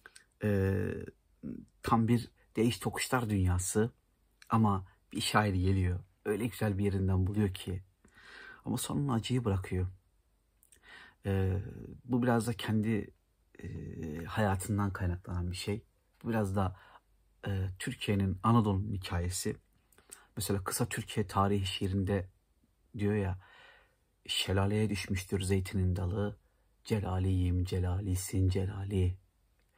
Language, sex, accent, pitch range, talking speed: Turkish, male, native, 95-105 Hz, 105 wpm